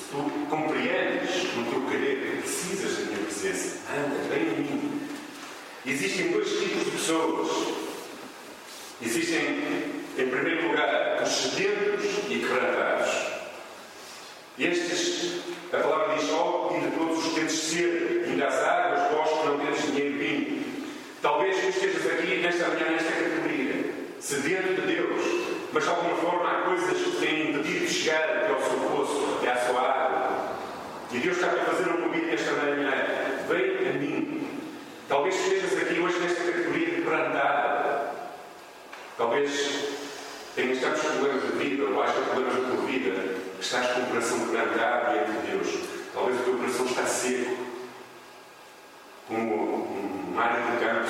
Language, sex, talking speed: Portuguese, male, 155 wpm